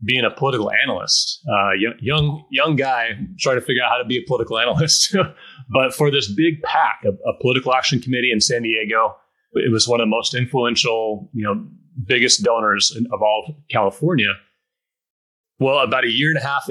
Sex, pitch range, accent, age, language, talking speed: male, 110-145 Hz, American, 30-49, English, 190 wpm